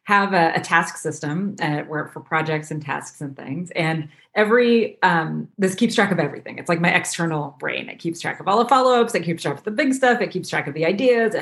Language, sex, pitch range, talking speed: English, female, 170-245 Hz, 245 wpm